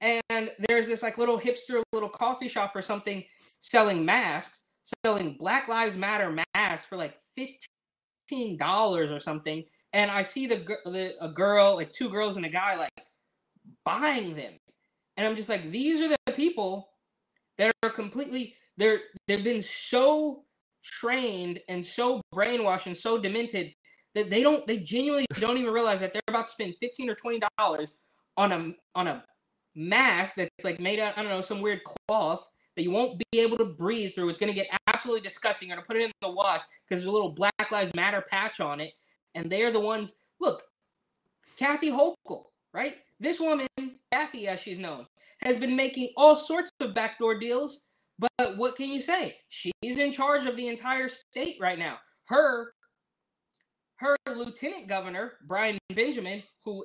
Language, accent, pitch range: English, American, 195-250 Hz